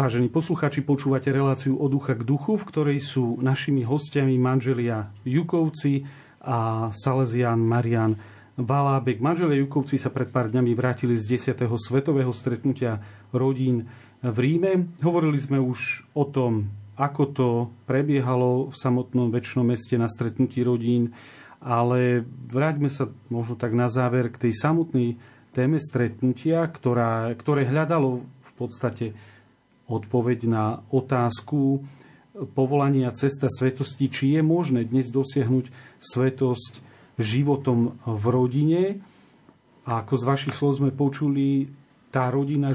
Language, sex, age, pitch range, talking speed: Slovak, male, 40-59, 120-140 Hz, 125 wpm